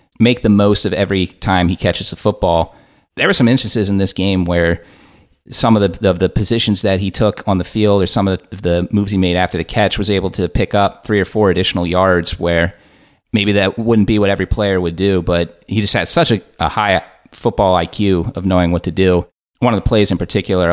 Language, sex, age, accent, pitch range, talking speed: English, male, 30-49, American, 90-105 Hz, 235 wpm